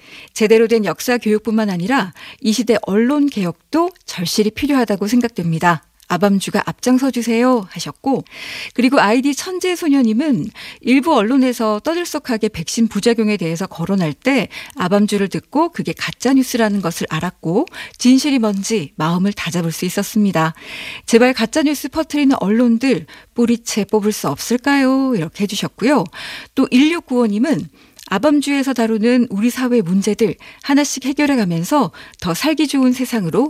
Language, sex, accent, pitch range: Korean, female, native, 195-260 Hz